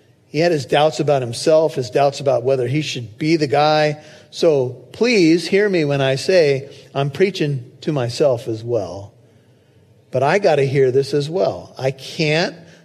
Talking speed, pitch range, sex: 175 wpm, 130-165 Hz, male